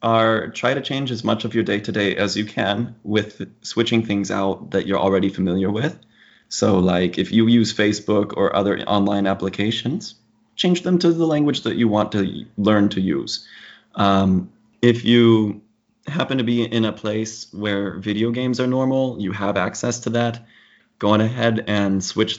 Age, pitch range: 20-39, 100-115 Hz